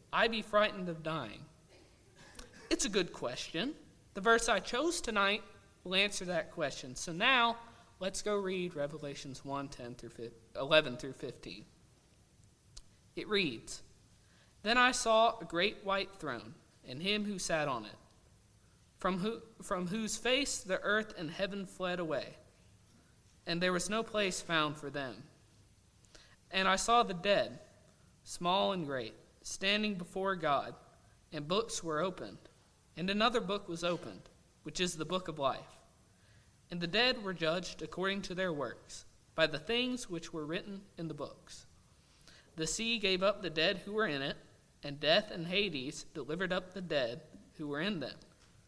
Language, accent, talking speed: English, American, 160 wpm